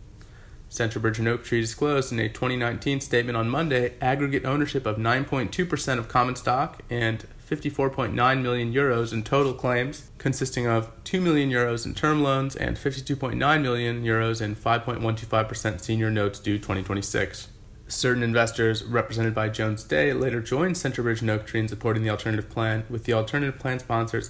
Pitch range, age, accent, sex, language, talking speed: 110-125 Hz, 30-49, American, male, English, 160 wpm